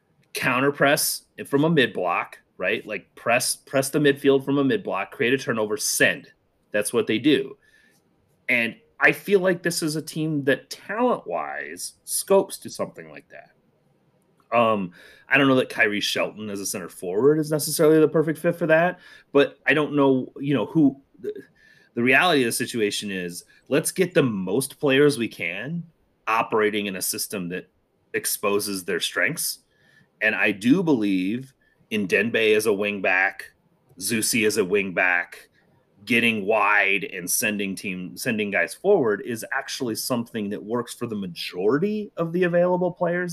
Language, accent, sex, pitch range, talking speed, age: English, American, male, 110-175 Hz, 170 wpm, 30-49